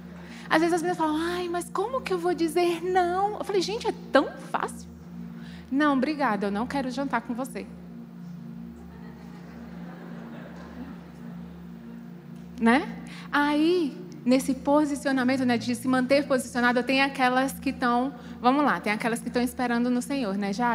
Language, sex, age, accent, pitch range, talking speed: Portuguese, female, 20-39, Brazilian, 205-290 Hz, 145 wpm